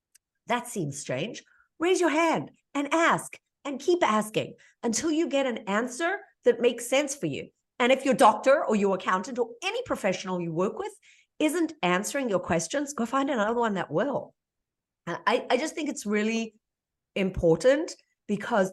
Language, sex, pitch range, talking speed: English, female, 190-285 Hz, 165 wpm